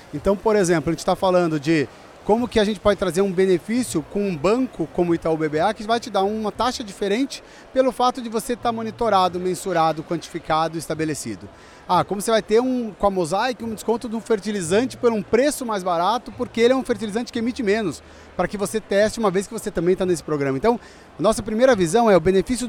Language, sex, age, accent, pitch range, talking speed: Portuguese, male, 30-49, Brazilian, 170-225 Hz, 220 wpm